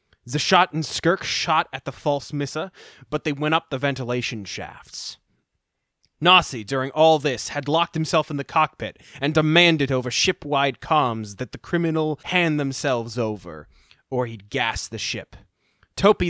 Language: English